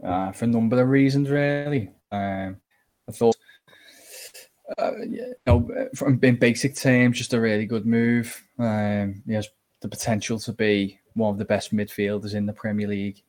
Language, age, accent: English, 10-29, British